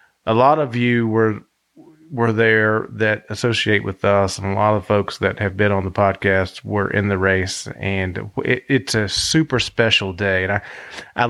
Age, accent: 30-49, American